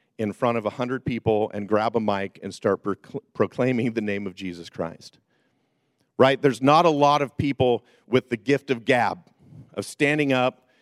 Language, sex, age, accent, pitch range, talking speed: English, male, 50-69, American, 105-130 Hz, 190 wpm